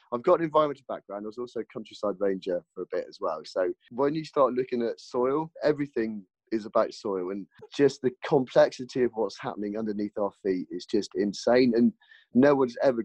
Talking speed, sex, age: 200 wpm, male, 30-49